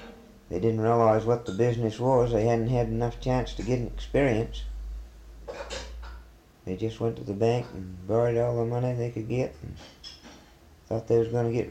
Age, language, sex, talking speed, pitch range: 50-69, English, male, 190 wpm, 95-120 Hz